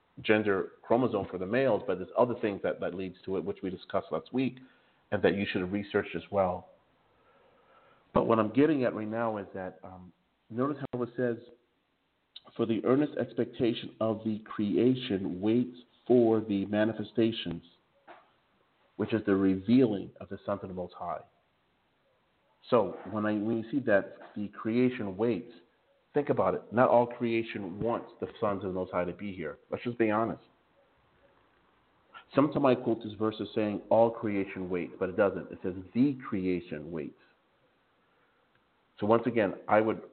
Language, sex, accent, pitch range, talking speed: English, male, American, 95-115 Hz, 170 wpm